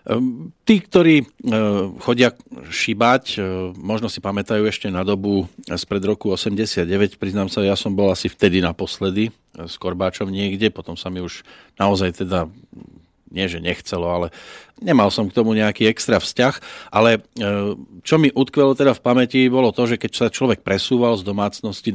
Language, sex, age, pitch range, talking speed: Slovak, male, 40-59, 100-125 Hz, 165 wpm